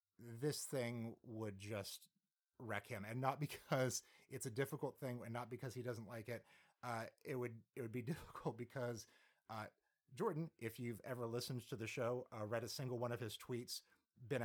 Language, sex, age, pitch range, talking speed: English, male, 30-49, 105-130 Hz, 190 wpm